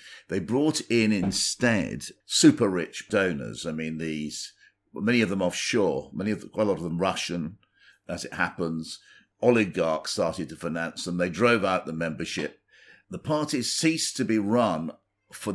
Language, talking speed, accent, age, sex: English, 160 wpm, British, 50-69, male